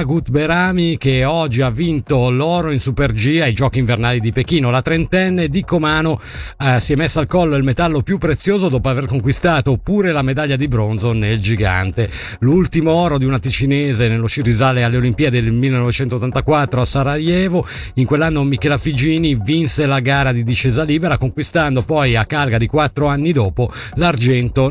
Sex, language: male, Italian